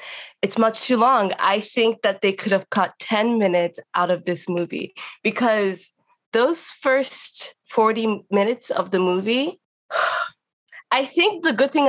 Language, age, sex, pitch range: English, 20-39, female, 195-255 Hz